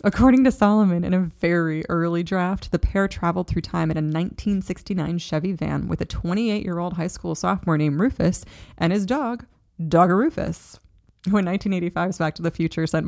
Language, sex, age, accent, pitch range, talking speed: English, female, 20-39, American, 160-200 Hz, 175 wpm